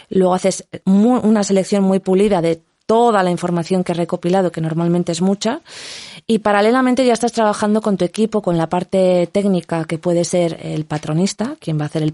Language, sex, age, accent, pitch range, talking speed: Spanish, female, 20-39, Spanish, 170-205 Hz, 195 wpm